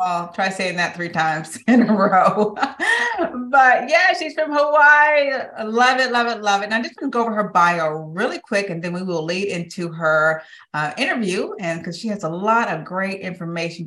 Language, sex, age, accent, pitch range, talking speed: English, female, 30-49, American, 175-250 Hz, 210 wpm